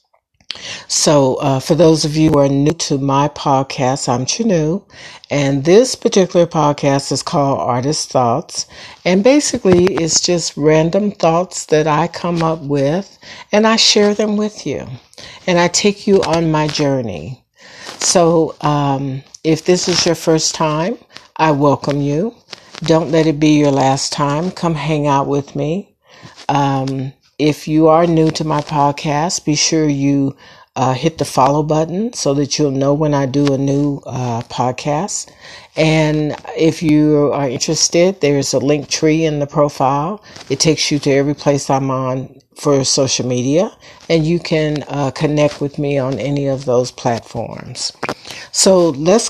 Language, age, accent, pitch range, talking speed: English, 60-79, American, 140-170 Hz, 165 wpm